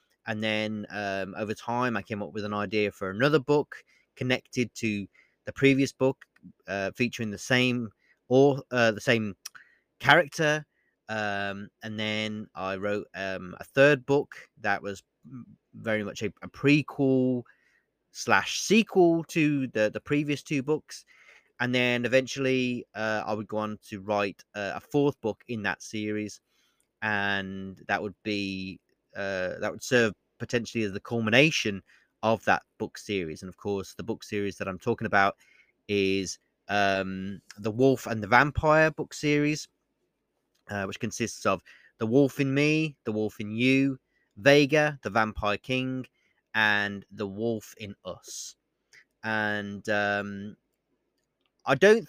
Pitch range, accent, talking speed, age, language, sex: 100-130 Hz, British, 150 wpm, 30-49, English, male